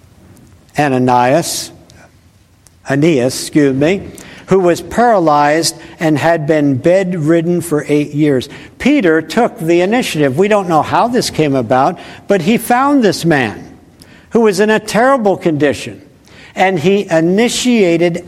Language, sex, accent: English, male, American